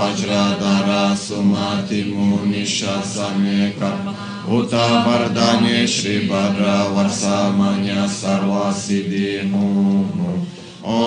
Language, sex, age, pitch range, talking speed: Italian, male, 20-39, 100-120 Hz, 60 wpm